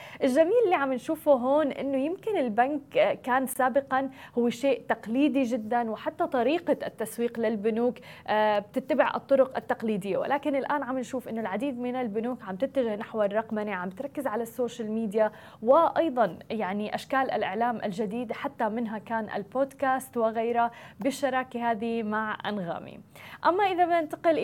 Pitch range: 225-270 Hz